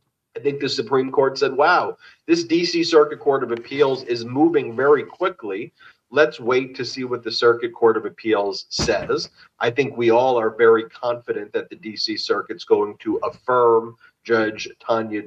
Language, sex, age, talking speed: English, male, 40-59, 175 wpm